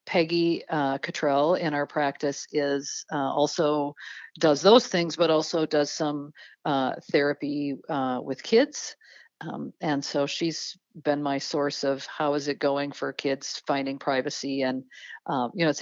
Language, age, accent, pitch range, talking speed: English, 50-69, American, 145-180 Hz, 160 wpm